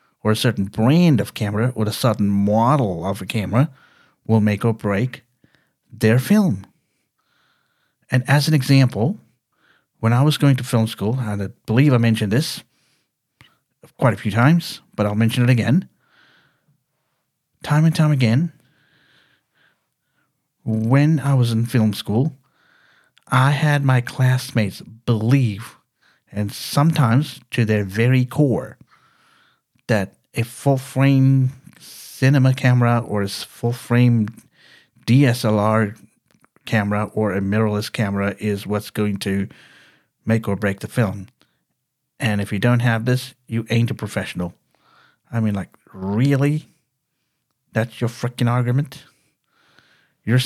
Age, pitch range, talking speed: 50-69, 110-140 Hz, 130 wpm